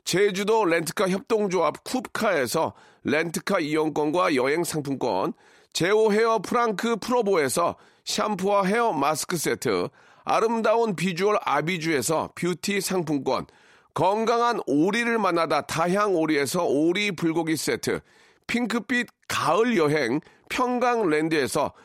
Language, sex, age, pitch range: Korean, male, 40-59, 160-225 Hz